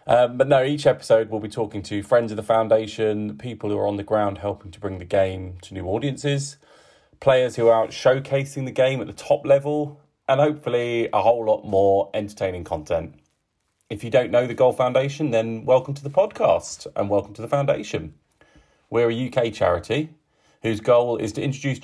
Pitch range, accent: 105-135 Hz, British